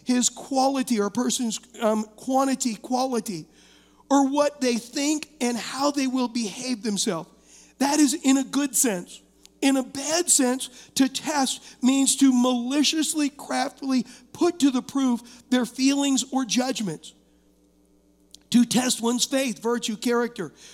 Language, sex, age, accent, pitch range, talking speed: English, male, 50-69, American, 230-270 Hz, 140 wpm